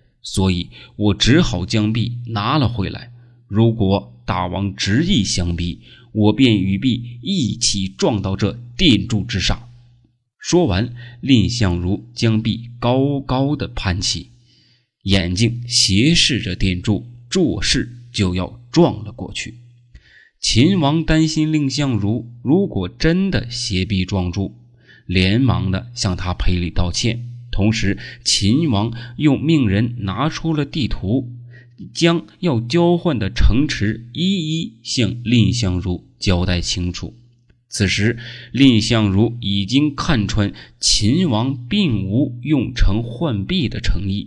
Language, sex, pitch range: Chinese, male, 100-125 Hz